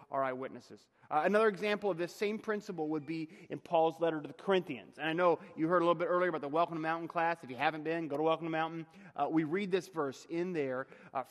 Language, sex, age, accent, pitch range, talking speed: English, male, 30-49, American, 155-210 Hz, 260 wpm